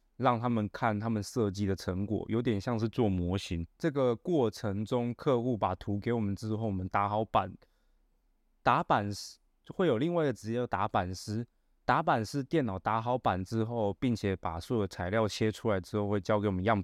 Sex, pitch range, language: male, 100-120 Hz, Chinese